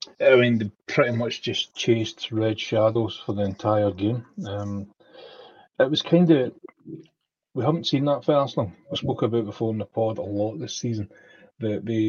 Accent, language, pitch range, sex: British, English, 100-115 Hz, male